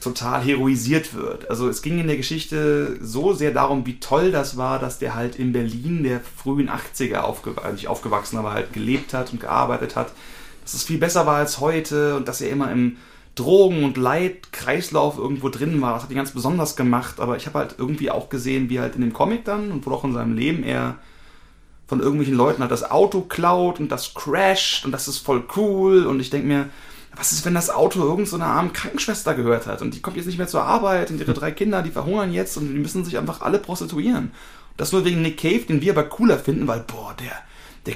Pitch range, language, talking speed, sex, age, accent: 125-170 Hz, German, 230 wpm, male, 30-49, German